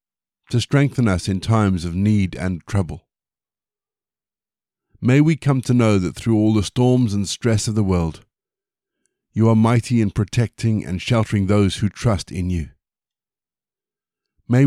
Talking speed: 150 wpm